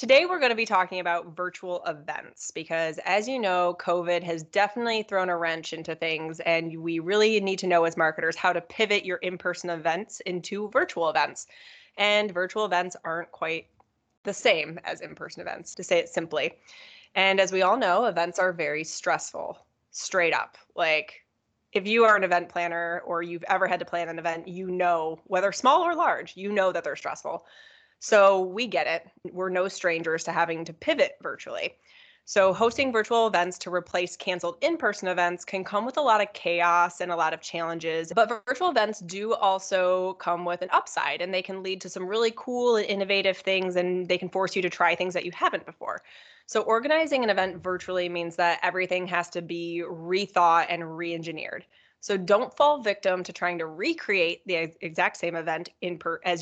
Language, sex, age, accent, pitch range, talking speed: English, female, 20-39, American, 170-205 Hz, 190 wpm